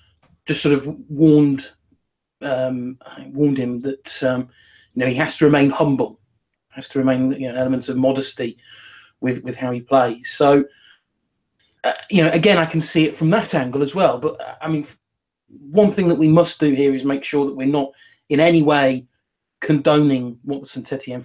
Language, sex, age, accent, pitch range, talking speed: English, male, 30-49, British, 130-155 Hz, 190 wpm